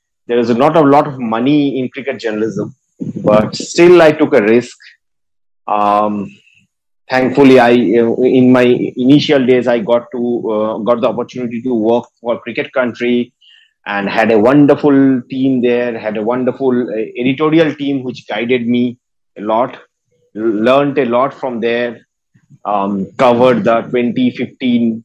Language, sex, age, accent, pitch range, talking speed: English, male, 30-49, Indian, 120-150 Hz, 145 wpm